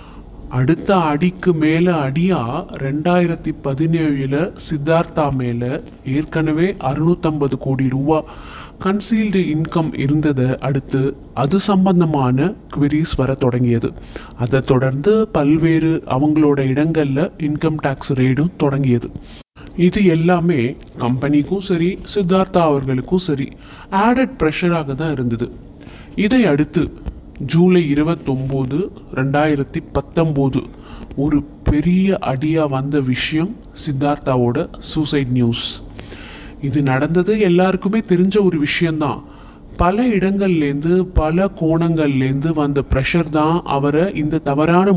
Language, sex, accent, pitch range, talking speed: Tamil, male, native, 140-175 Hz, 80 wpm